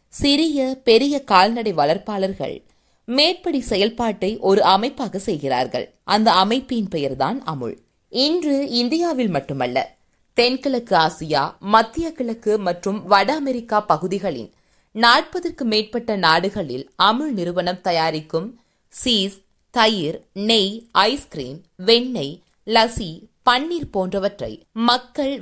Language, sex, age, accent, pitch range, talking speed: Tamil, female, 20-39, native, 185-250 Hz, 90 wpm